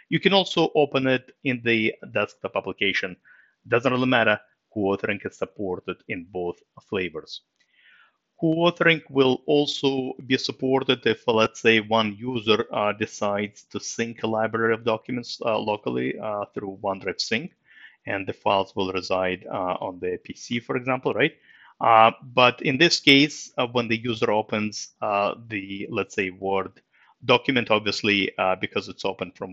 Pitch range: 105-135 Hz